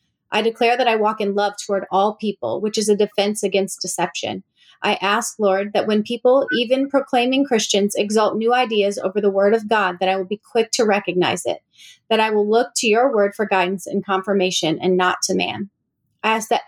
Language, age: English, 30-49